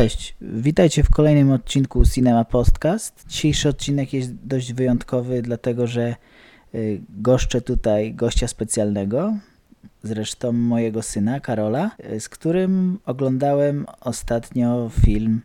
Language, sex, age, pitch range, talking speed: Polish, male, 20-39, 105-130 Hz, 105 wpm